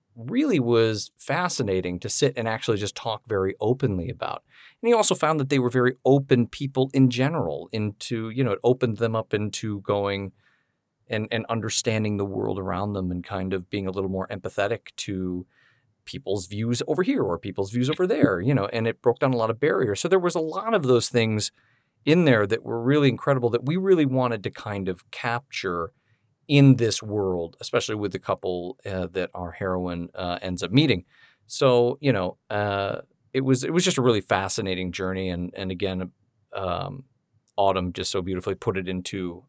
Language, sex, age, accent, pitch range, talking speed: English, male, 40-59, American, 95-125 Hz, 195 wpm